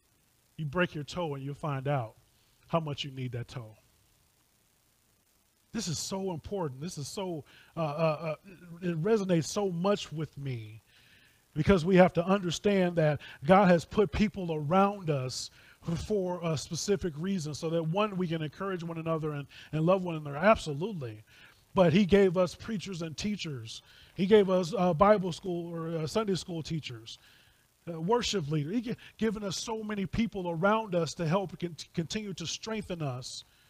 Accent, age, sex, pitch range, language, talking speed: American, 30-49, male, 135-185 Hz, English, 170 wpm